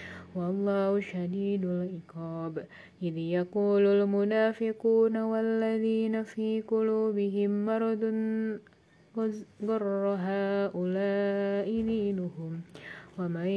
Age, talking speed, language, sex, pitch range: 20-39, 60 wpm, Indonesian, female, 180-205 Hz